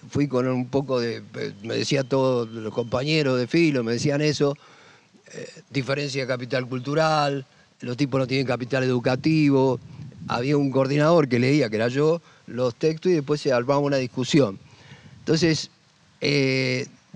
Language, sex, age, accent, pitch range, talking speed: Spanish, male, 50-69, Argentinian, 125-150 Hz, 155 wpm